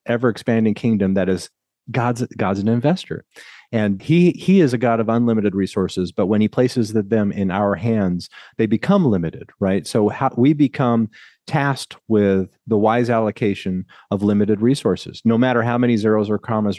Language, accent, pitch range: English, American, 105-125 Hz